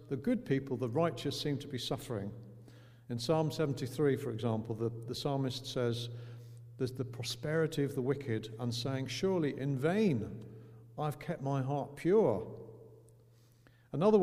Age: 50-69